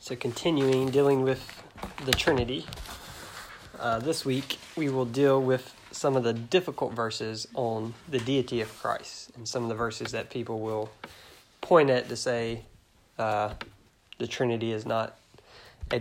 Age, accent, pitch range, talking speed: 20-39, American, 110-125 Hz, 155 wpm